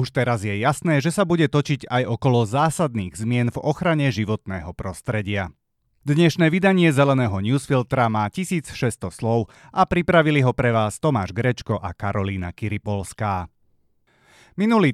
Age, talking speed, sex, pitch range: 30-49, 135 wpm, male, 110-145 Hz